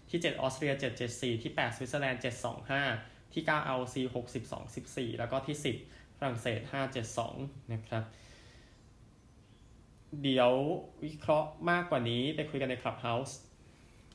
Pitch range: 115-130 Hz